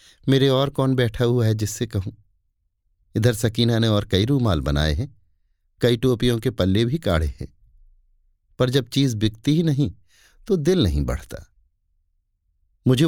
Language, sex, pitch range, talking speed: Hindi, male, 80-125 Hz, 155 wpm